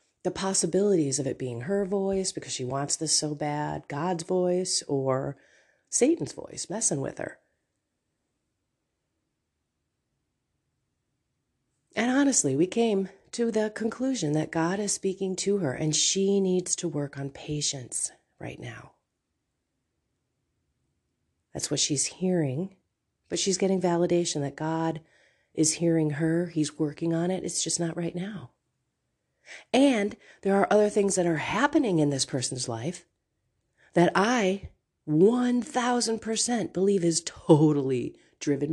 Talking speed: 130 wpm